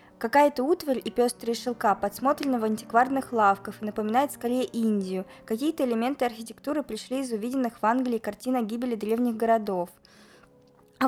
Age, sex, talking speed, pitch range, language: 20-39, female, 145 wpm, 215-255 Hz, Russian